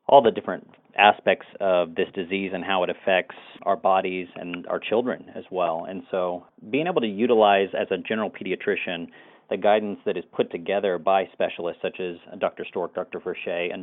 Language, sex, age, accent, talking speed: English, male, 40-59, American, 185 wpm